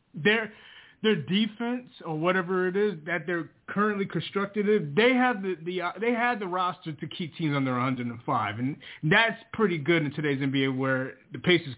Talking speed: 190 wpm